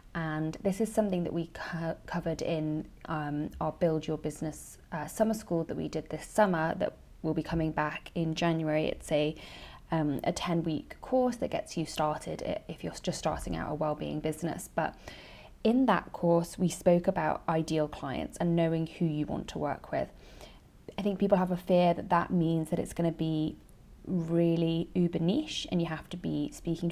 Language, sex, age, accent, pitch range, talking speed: English, female, 20-39, British, 155-185 Hz, 190 wpm